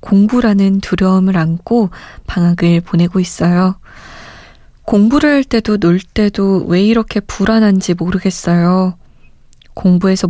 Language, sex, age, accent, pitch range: Korean, female, 20-39, native, 175-225 Hz